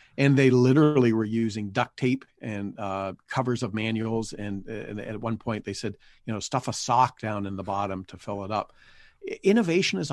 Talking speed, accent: 200 wpm, American